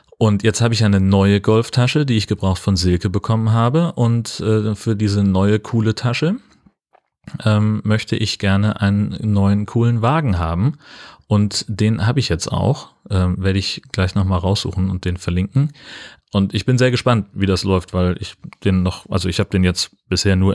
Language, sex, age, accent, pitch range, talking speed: German, male, 30-49, German, 95-110 Hz, 185 wpm